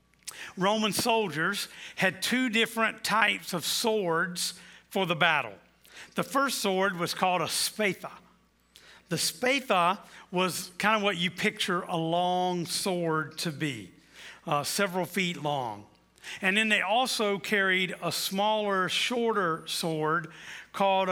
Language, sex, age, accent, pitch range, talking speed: English, male, 50-69, American, 165-210 Hz, 130 wpm